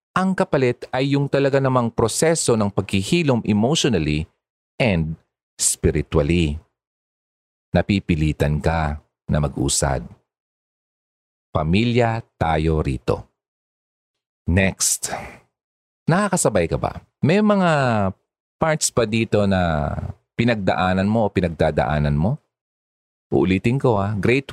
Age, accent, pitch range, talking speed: 40-59, native, 80-135 Hz, 95 wpm